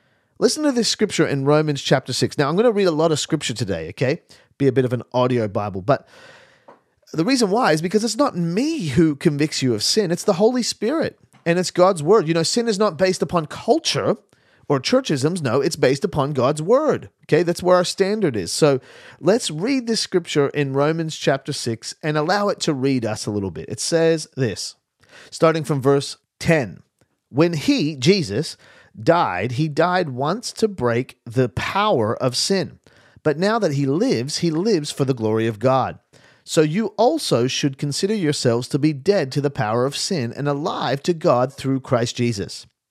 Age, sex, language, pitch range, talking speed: 30-49, male, English, 130-185 Hz, 195 wpm